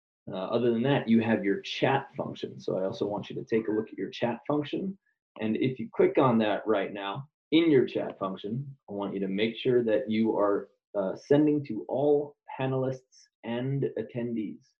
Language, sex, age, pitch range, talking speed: English, male, 20-39, 115-155 Hz, 205 wpm